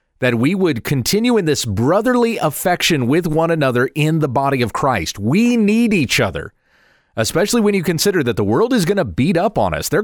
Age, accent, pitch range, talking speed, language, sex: 40-59, American, 125-185 Hz, 210 wpm, English, male